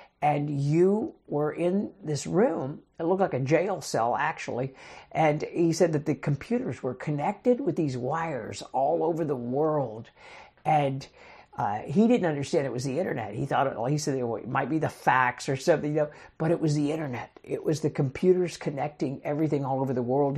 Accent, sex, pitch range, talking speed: American, male, 140-165 Hz, 195 wpm